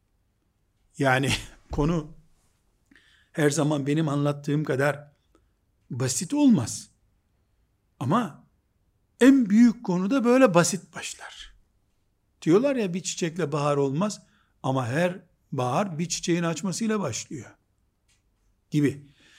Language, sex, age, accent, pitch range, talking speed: Turkish, male, 60-79, native, 115-190 Hz, 95 wpm